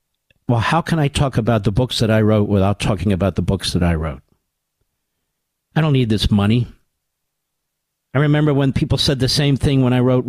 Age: 50-69